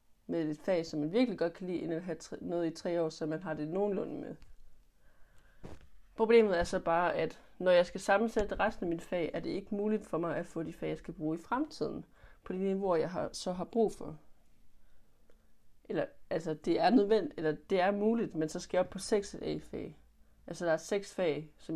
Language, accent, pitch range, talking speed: Danish, native, 160-195 Hz, 230 wpm